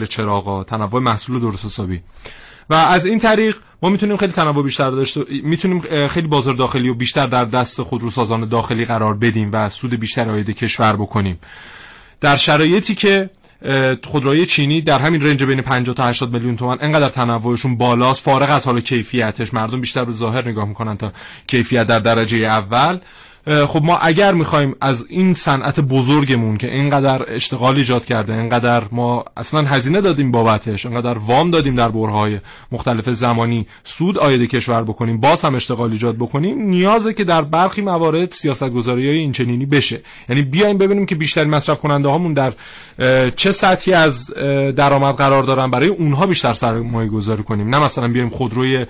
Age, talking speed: 30-49, 165 wpm